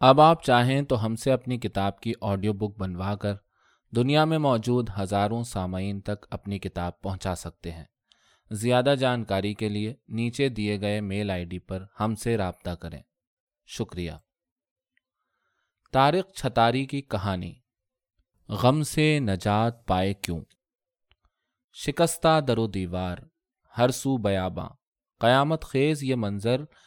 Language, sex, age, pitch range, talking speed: Urdu, male, 20-39, 95-130 Hz, 130 wpm